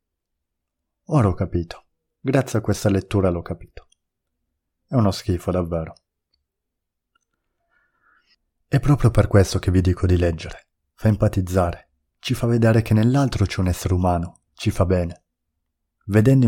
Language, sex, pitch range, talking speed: Italian, male, 85-110 Hz, 135 wpm